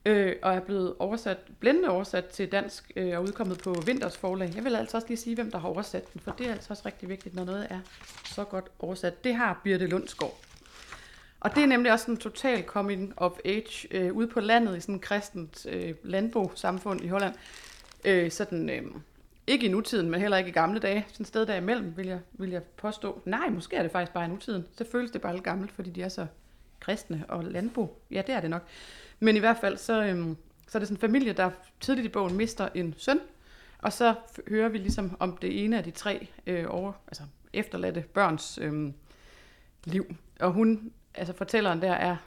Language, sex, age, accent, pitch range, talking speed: Danish, female, 30-49, native, 180-220 Hz, 215 wpm